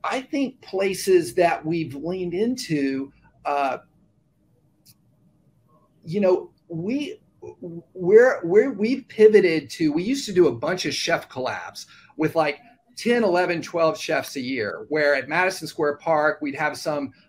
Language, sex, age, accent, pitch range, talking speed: English, male, 40-59, American, 140-185 Hz, 140 wpm